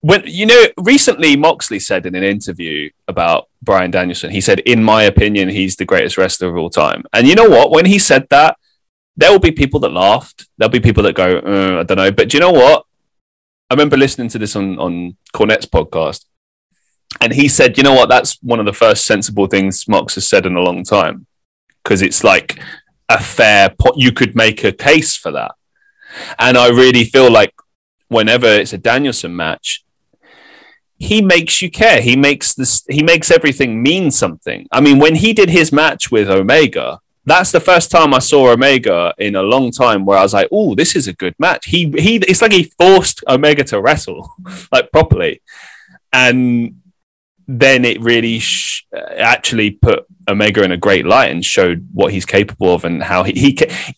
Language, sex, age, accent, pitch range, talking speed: English, male, 20-39, British, 100-165 Hz, 200 wpm